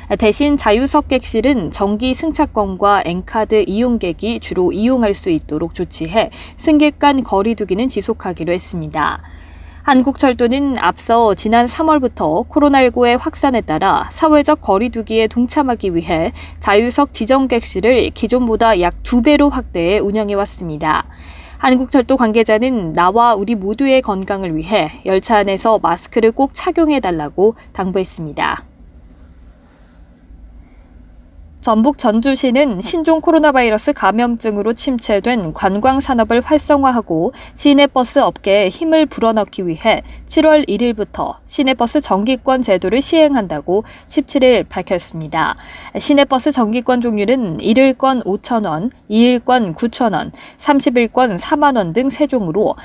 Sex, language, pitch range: female, Korean, 190-265 Hz